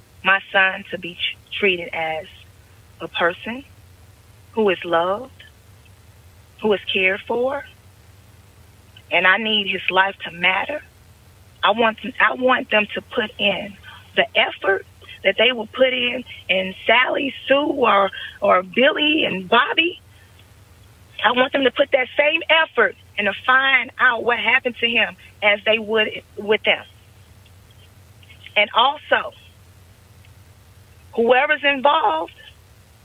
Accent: American